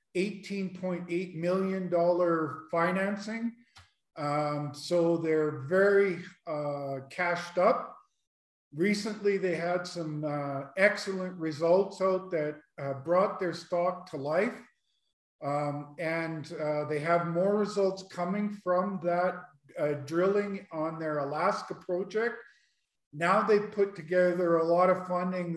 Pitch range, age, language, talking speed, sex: 150-185 Hz, 50-69, English, 115 wpm, male